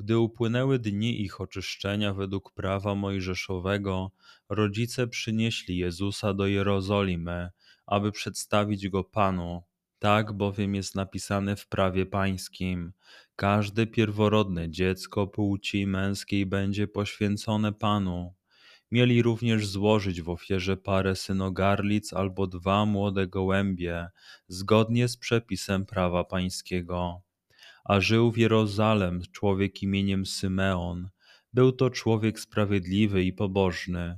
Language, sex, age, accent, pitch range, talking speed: Polish, male, 20-39, native, 95-105 Hz, 105 wpm